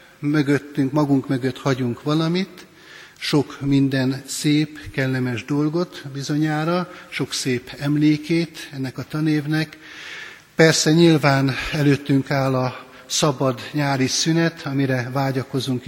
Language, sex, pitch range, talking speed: Hungarian, male, 135-160 Hz, 100 wpm